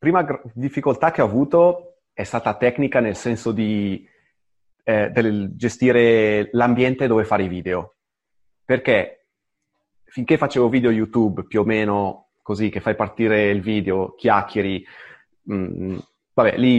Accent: native